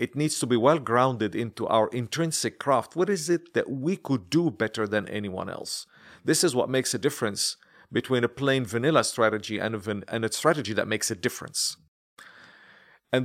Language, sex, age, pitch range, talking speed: English, male, 40-59, 110-150 Hz, 180 wpm